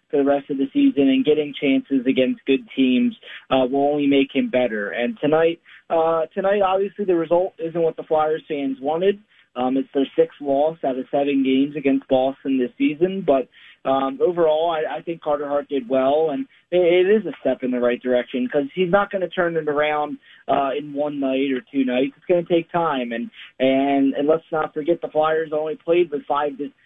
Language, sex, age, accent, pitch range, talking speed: English, male, 20-39, American, 135-160 Hz, 210 wpm